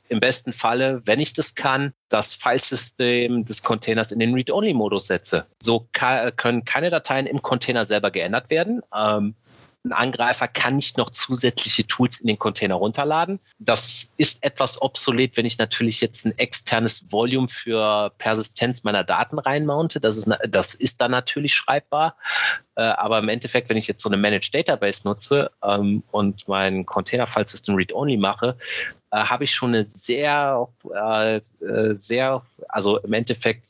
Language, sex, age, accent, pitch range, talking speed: German, male, 30-49, German, 100-125 Hz, 160 wpm